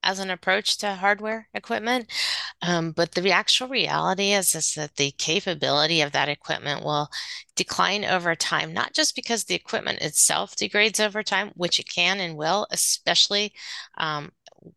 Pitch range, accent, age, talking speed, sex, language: 155-195 Hz, American, 30-49, 160 wpm, female, English